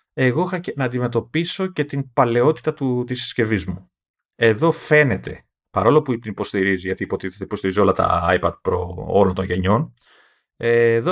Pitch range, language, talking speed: 100-130 Hz, Greek, 150 wpm